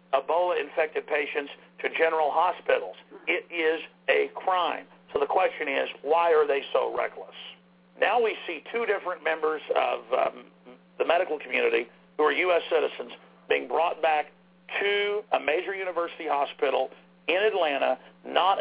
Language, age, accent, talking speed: English, 50-69, American, 140 wpm